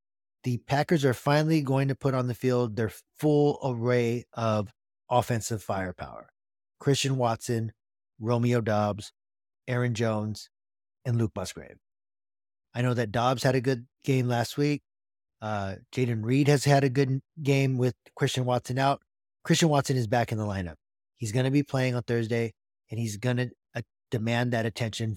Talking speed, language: 160 wpm, English